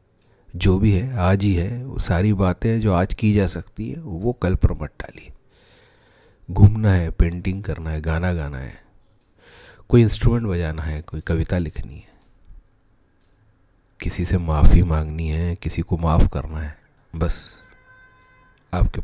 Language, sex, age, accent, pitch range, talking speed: Hindi, male, 40-59, native, 80-105 Hz, 150 wpm